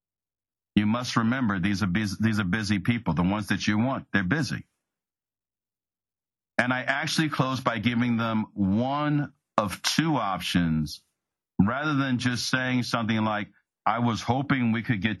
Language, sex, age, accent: English, male, 50-69, American